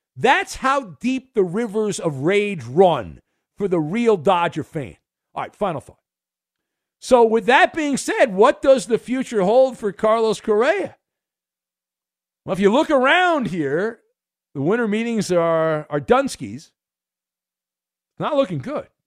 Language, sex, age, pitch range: English, male, 50-69, 145-230 Hz